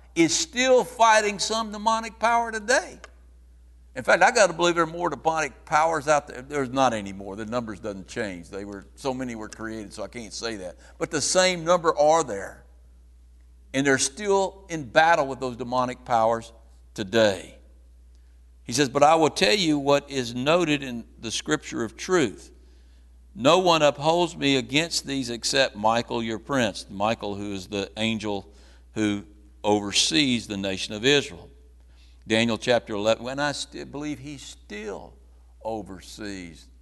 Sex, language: male, English